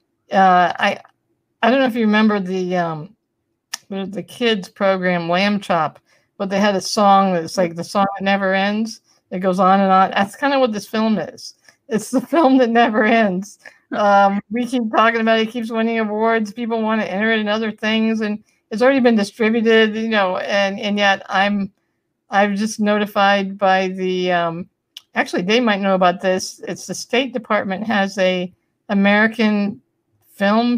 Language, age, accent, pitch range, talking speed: English, 60-79, American, 190-225 Hz, 185 wpm